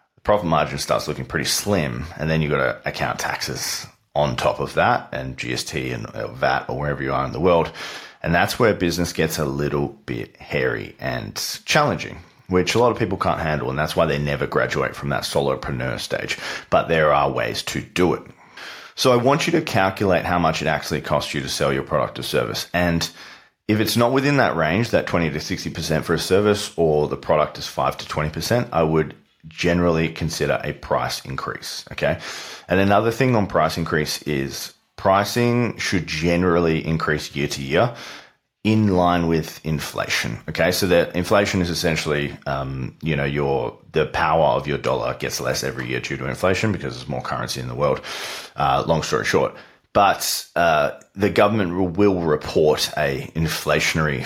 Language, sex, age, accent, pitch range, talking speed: English, male, 30-49, Australian, 75-95 Hz, 185 wpm